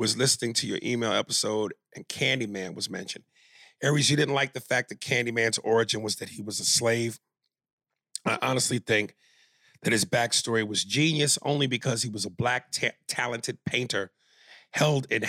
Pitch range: 115-145 Hz